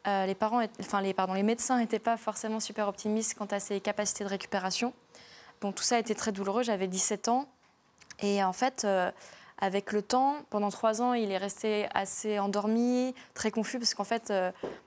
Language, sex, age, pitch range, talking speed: French, female, 20-39, 200-230 Hz, 200 wpm